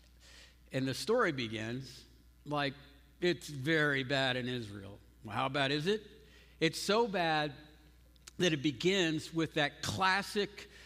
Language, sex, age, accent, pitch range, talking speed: English, male, 60-79, American, 135-180 Hz, 125 wpm